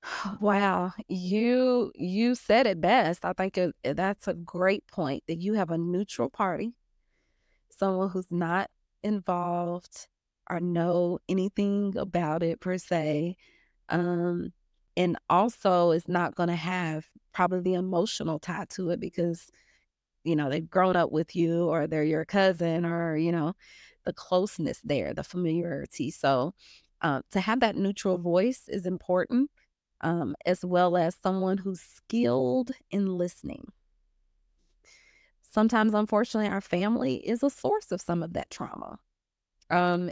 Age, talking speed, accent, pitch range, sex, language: 30-49, 140 wpm, American, 170-205 Hz, female, English